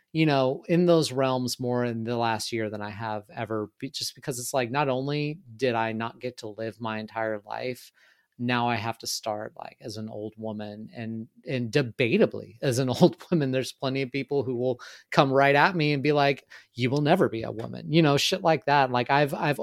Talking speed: 225 wpm